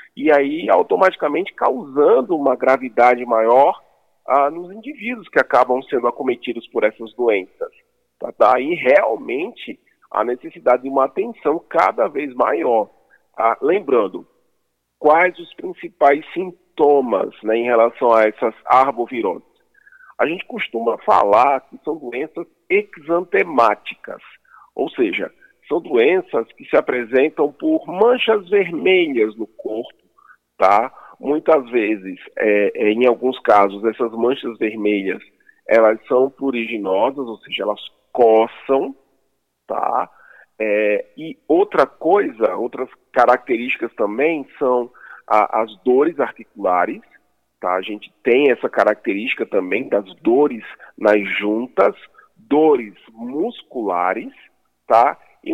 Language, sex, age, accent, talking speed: Portuguese, male, 40-59, Brazilian, 105 wpm